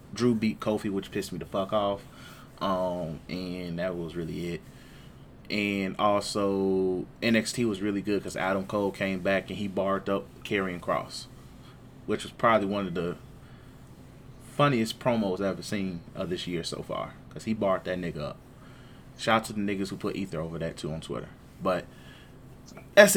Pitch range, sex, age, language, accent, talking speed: 95-125 Hz, male, 20-39, English, American, 180 wpm